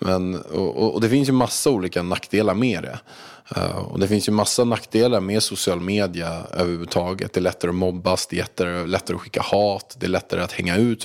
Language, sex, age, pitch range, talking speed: Swedish, male, 20-39, 90-105 Hz, 210 wpm